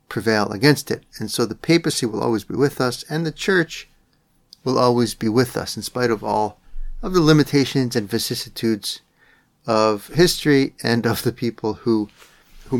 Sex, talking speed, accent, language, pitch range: male, 175 wpm, American, English, 110-135 Hz